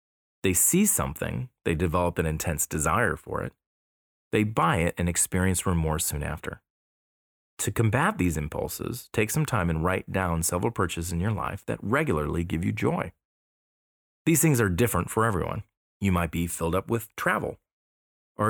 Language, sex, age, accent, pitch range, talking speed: English, male, 30-49, American, 80-110 Hz, 170 wpm